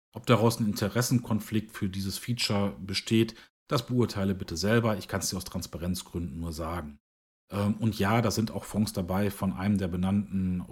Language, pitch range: English, 95-115 Hz